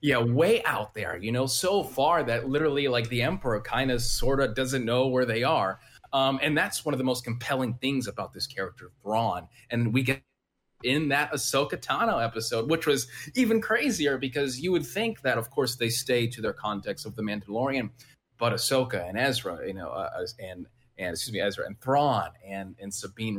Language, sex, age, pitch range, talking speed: English, male, 30-49, 105-135 Hz, 205 wpm